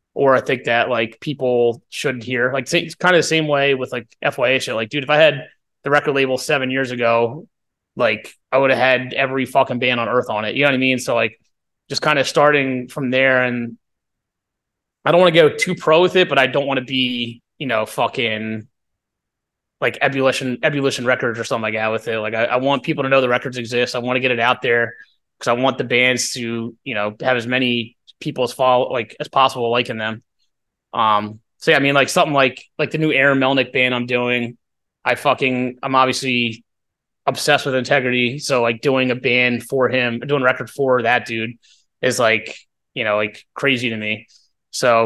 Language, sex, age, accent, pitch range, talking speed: English, male, 20-39, American, 115-135 Hz, 215 wpm